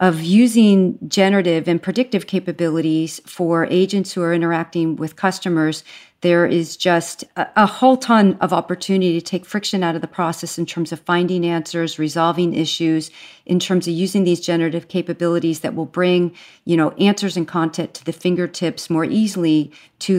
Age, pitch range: 40-59, 160-180 Hz